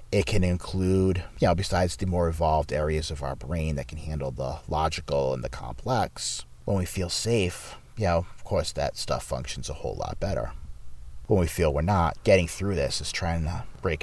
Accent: American